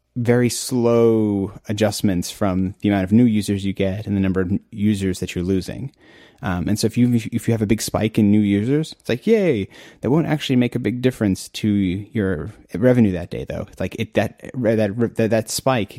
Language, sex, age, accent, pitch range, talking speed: English, male, 30-49, American, 95-115 Hz, 215 wpm